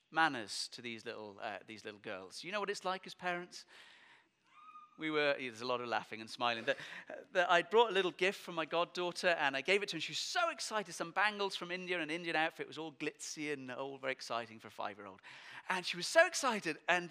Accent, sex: British, male